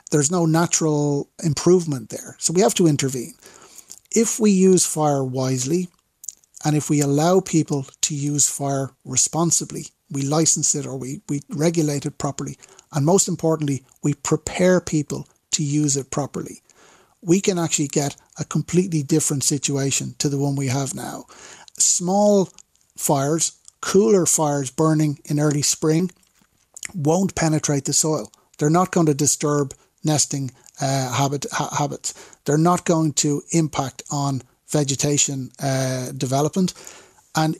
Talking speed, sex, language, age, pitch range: 140 wpm, male, English, 60-79, 140-165 Hz